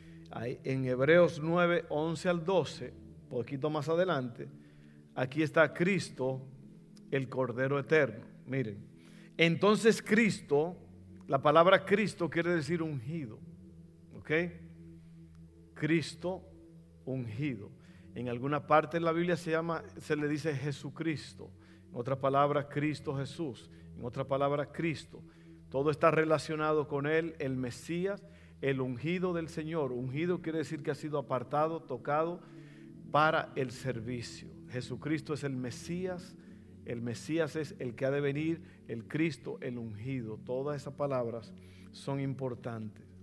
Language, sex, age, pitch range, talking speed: Spanish, male, 50-69, 115-160 Hz, 125 wpm